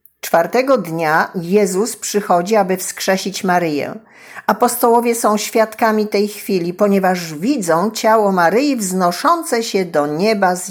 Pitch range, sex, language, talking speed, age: 185-225 Hz, female, Polish, 120 wpm, 50-69